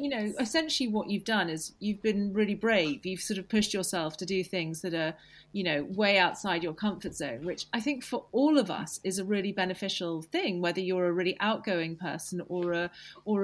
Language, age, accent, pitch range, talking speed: English, 40-59, British, 180-215 Hz, 220 wpm